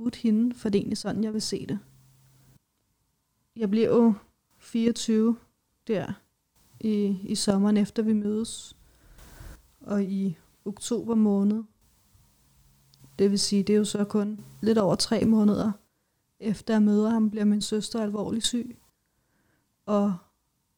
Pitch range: 195-220 Hz